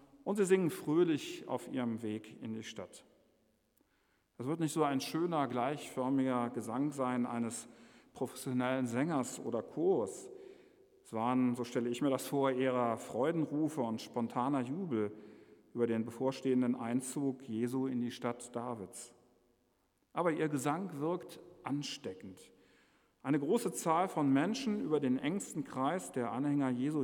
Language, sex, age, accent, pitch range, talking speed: German, male, 50-69, German, 115-150 Hz, 140 wpm